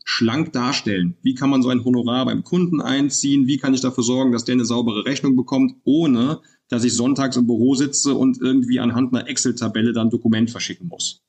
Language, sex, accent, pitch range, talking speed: German, male, German, 115-145 Hz, 205 wpm